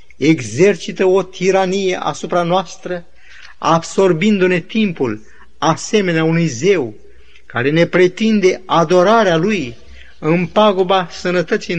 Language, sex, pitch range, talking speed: Romanian, male, 140-185 Hz, 90 wpm